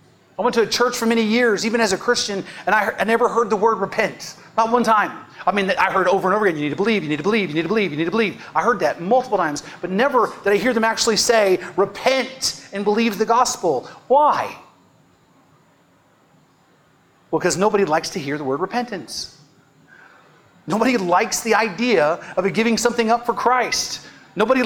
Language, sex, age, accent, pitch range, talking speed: English, male, 30-49, American, 190-245 Hz, 205 wpm